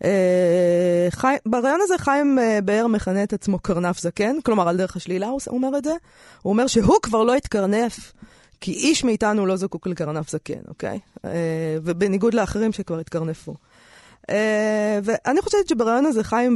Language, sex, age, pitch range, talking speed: Hebrew, female, 20-39, 180-235 Hz, 165 wpm